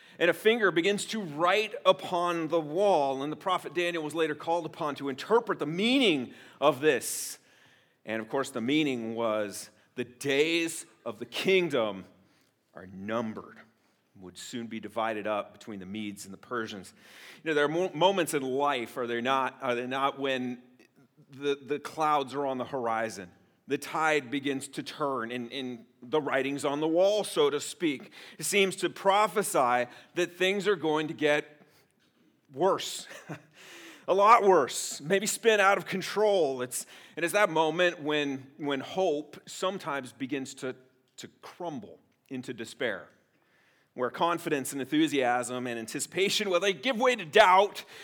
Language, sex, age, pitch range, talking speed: English, male, 40-59, 125-175 Hz, 160 wpm